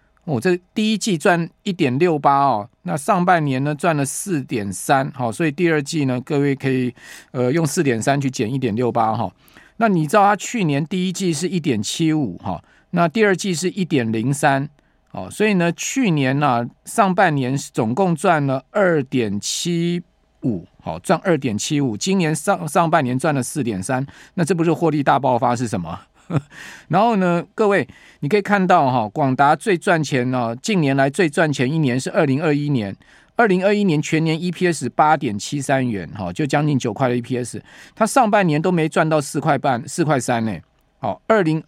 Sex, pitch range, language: male, 130-175 Hz, Chinese